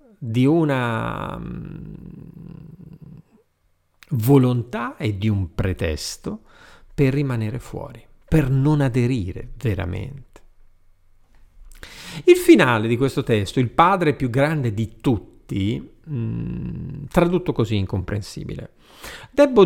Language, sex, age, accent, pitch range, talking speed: Italian, male, 50-69, native, 105-150 Hz, 90 wpm